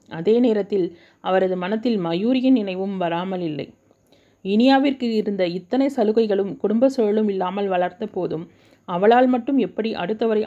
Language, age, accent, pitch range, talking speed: Tamil, 30-49, native, 175-230 Hz, 120 wpm